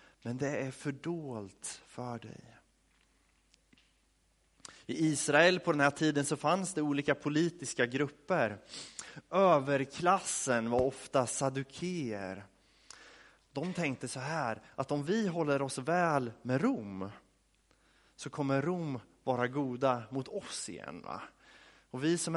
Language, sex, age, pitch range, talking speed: Swedish, male, 30-49, 115-160 Hz, 125 wpm